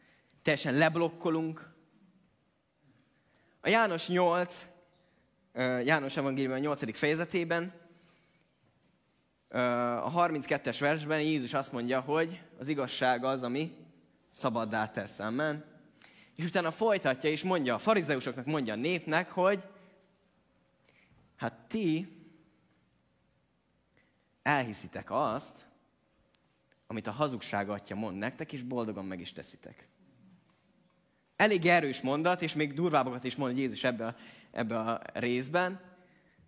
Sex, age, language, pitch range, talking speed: male, 20-39, Hungarian, 120-170 Hz, 105 wpm